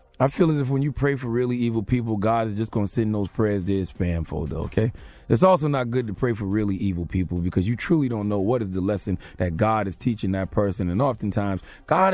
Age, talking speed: 30-49, 250 wpm